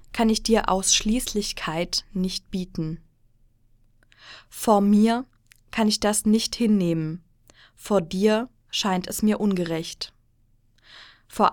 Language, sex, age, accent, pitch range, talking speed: German, female, 20-39, German, 150-215 Hz, 105 wpm